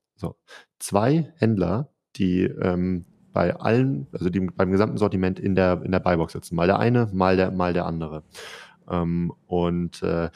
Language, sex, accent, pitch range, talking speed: German, male, German, 90-105 Hz, 170 wpm